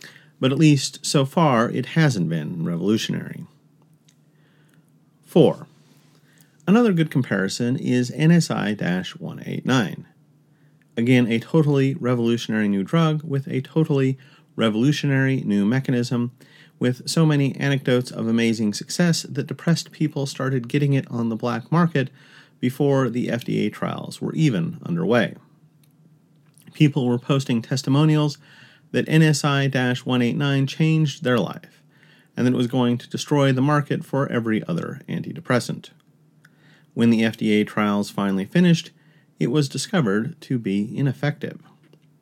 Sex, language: male, English